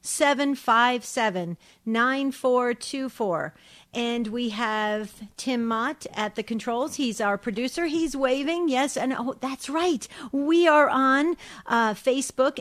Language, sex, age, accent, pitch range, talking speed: English, female, 50-69, American, 220-265 Hz, 145 wpm